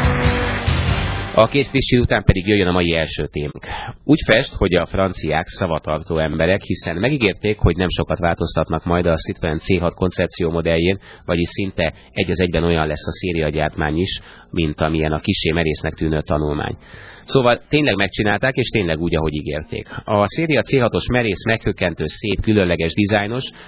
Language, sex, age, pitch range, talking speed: Hungarian, male, 30-49, 80-100 Hz, 155 wpm